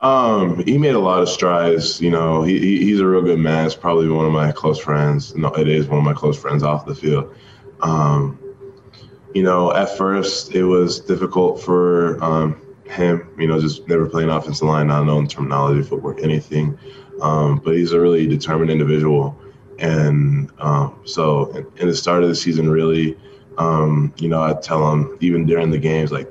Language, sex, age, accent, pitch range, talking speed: English, male, 20-39, American, 75-85 Hz, 195 wpm